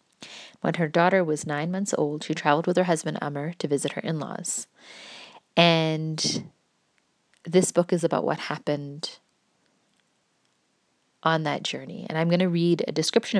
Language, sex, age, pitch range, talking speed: English, female, 20-39, 150-180 Hz, 150 wpm